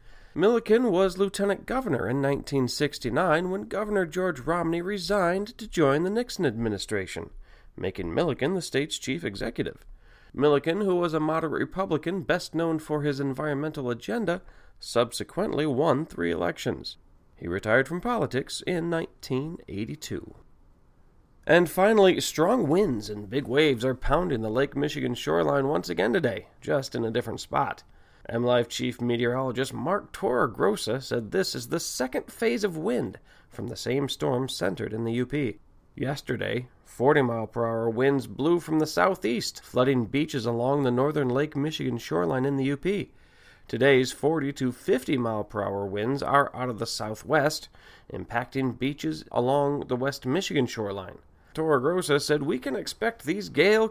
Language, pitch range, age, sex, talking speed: English, 120-165 Hz, 40-59, male, 150 wpm